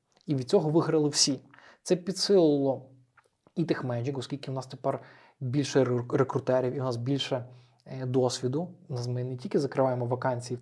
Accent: native